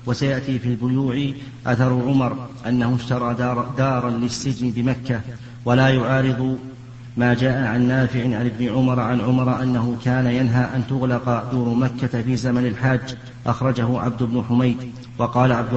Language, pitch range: Arabic, 120-130 Hz